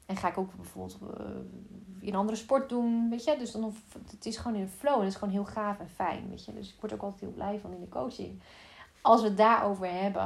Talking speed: 270 wpm